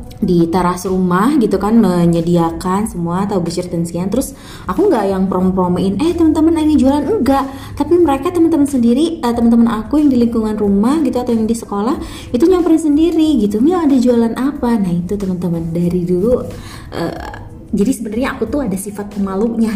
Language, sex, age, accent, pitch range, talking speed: Indonesian, female, 20-39, native, 175-240 Hz, 175 wpm